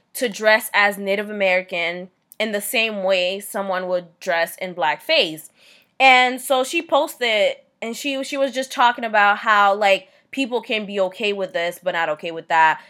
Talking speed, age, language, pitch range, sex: 175 wpm, 20-39, English, 185-230 Hz, female